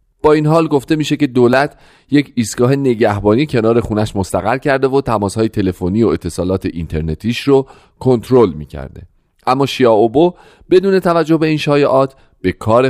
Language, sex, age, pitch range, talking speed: Persian, male, 40-59, 95-140 Hz, 150 wpm